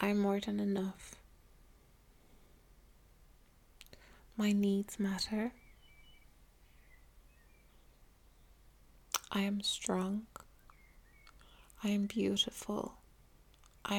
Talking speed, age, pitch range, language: 65 wpm, 20-39, 195-210 Hz, English